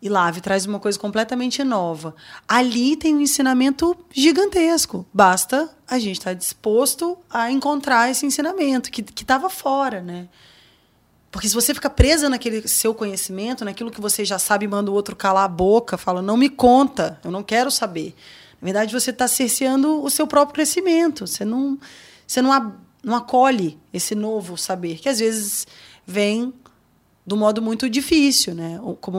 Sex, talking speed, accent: female, 170 wpm, Brazilian